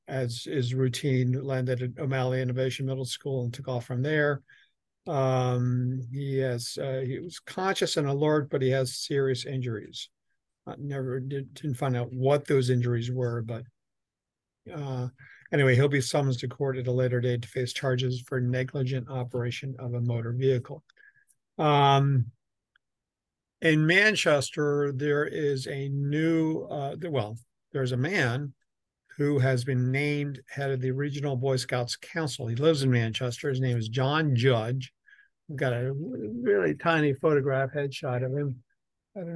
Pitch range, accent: 125-145 Hz, American